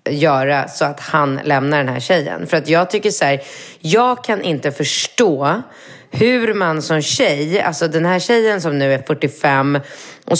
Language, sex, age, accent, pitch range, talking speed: Swedish, female, 30-49, native, 140-175 Hz, 180 wpm